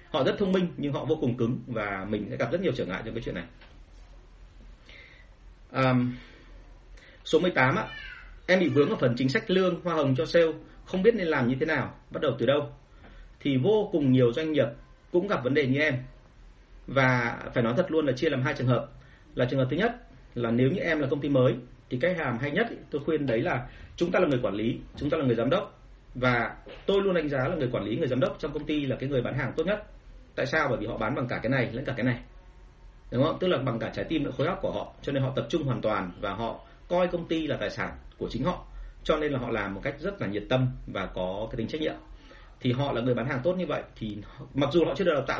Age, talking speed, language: 30-49, 275 wpm, Vietnamese